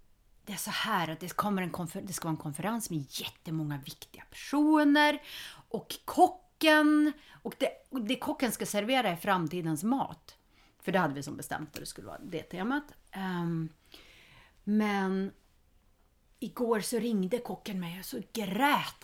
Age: 30-49